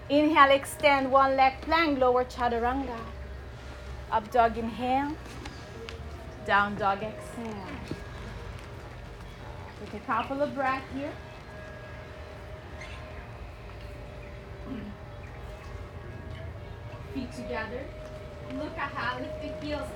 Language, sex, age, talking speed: English, female, 20-39, 80 wpm